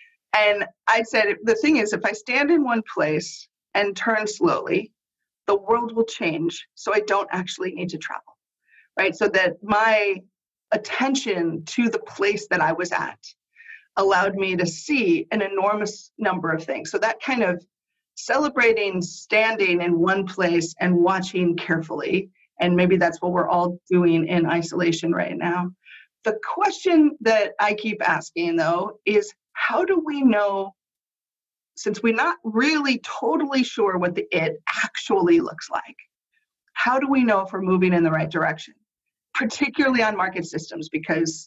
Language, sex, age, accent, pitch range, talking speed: English, female, 30-49, American, 180-240 Hz, 160 wpm